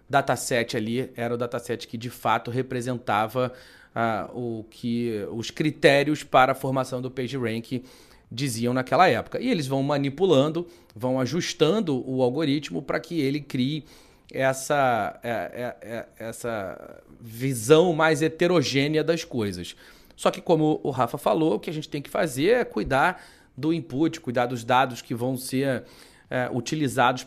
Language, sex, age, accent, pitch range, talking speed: Portuguese, male, 30-49, Brazilian, 125-165 Hz, 150 wpm